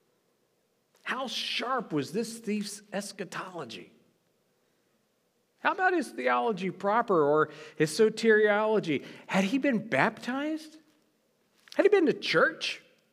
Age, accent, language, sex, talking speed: 50-69, American, English, male, 105 wpm